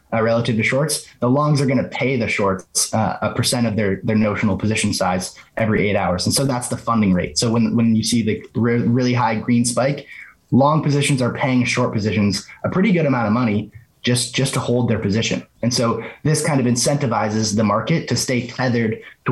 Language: English